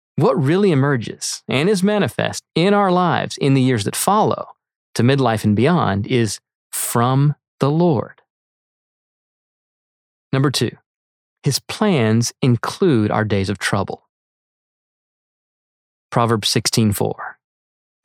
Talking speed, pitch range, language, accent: 110 wpm, 115-170 Hz, English, American